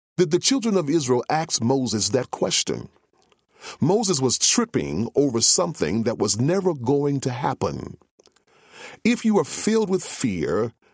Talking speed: 145 wpm